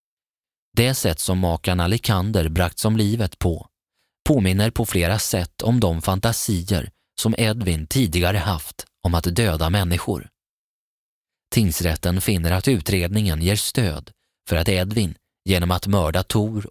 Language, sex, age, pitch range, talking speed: Swedish, male, 20-39, 85-110 Hz, 135 wpm